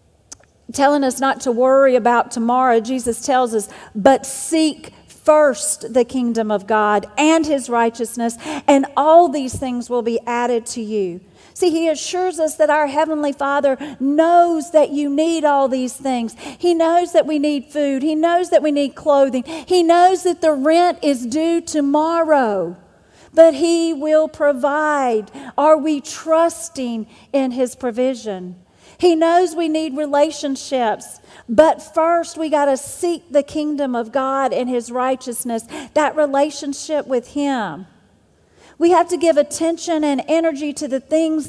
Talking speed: 150 wpm